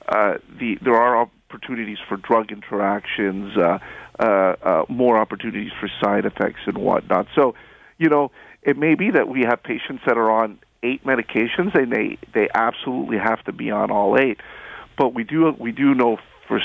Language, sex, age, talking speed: English, male, 50-69, 185 wpm